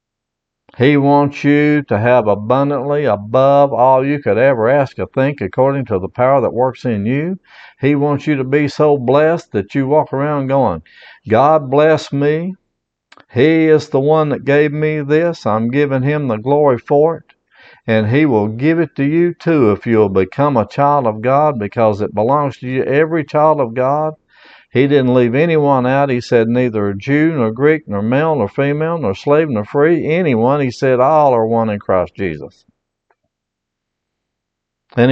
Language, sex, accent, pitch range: English, male, American, 120-150 Hz